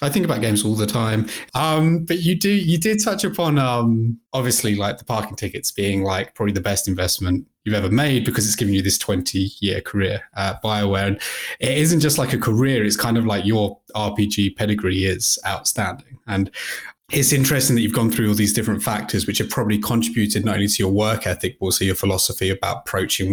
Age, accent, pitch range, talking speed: 20-39, British, 100-120 Hz, 215 wpm